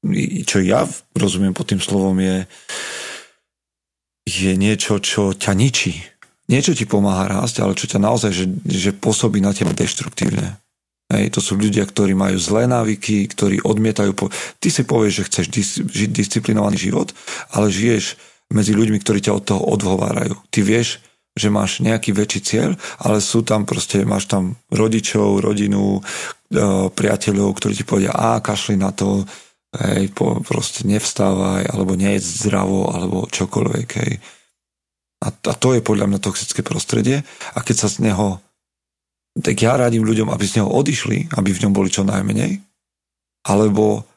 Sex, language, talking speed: male, Slovak, 155 wpm